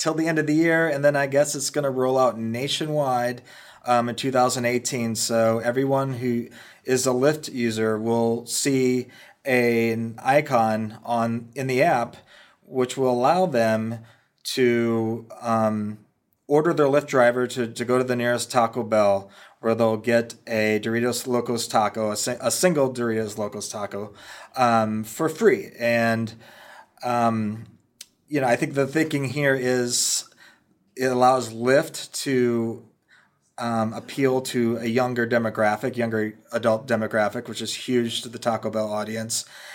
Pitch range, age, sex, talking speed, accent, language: 115-130 Hz, 30-49, male, 150 wpm, American, English